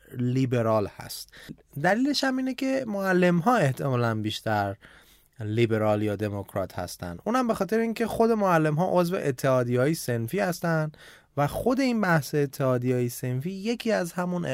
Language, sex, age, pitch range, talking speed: Persian, male, 20-39, 115-175 Hz, 130 wpm